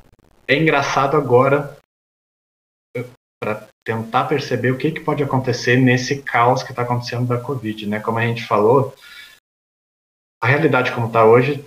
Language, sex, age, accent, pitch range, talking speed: Portuguese, male, 20-39, Brazilian, 115-145 Hz, 145 wpm